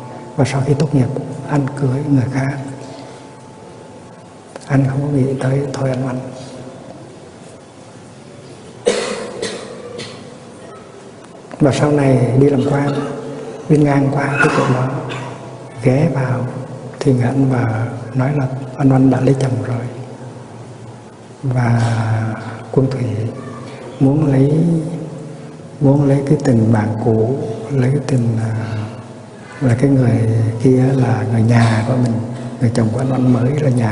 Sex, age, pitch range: male, 60-79, 120-135 Hz